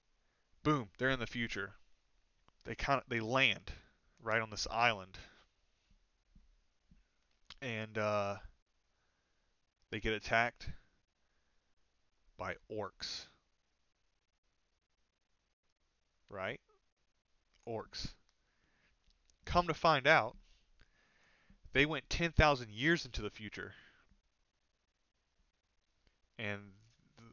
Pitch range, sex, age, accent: 105-135 Hz, male, 20-39, American